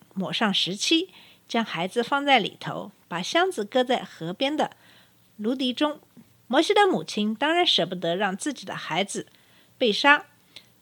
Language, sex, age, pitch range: Chinese, female, 50-69, 180-295 Hz